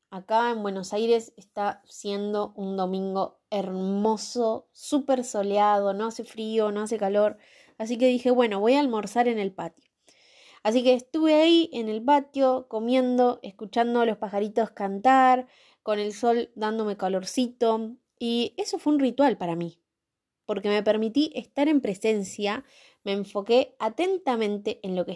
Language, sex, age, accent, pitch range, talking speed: Spanish, female, 20-39, Argentinian, 200-250 Hz, 155 wpm